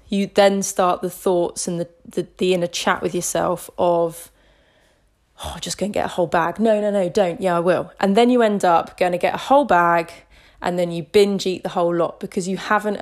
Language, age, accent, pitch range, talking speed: English, 30-49, British, 170-205 Hz, 240 wpm